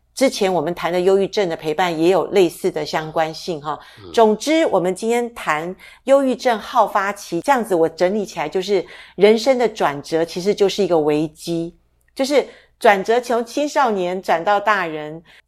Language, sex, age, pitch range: Chinese, female, 50-69, 170-230 Hz